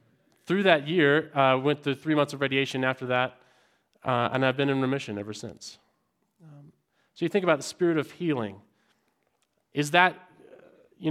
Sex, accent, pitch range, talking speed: male, American, 120-160 Hz, 175 wpm